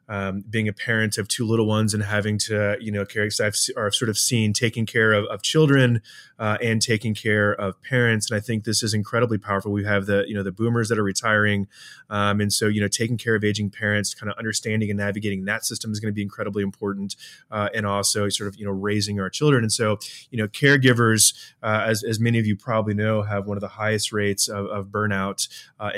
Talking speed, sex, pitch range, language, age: 240 wpm, male, 100-115 Hz, English, 20-39